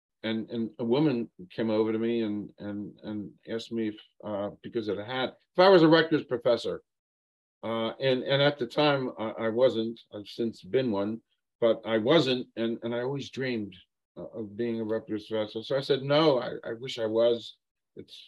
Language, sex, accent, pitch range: English, male, American, 105-125 Hz